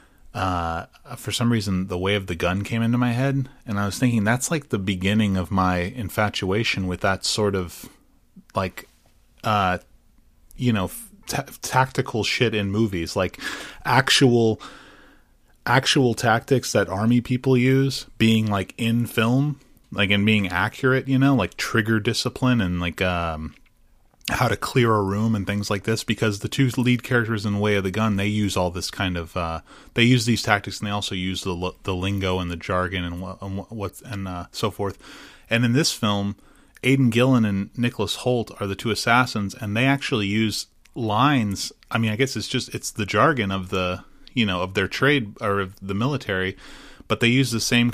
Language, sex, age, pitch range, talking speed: English, male, 30-49, 95-120 Hz, 190 wpm